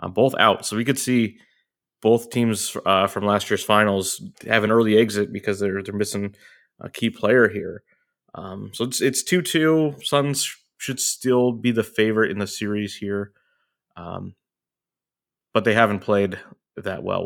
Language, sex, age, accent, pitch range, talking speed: English, male, 20-39, American, 95-115 Hz, 165 wpm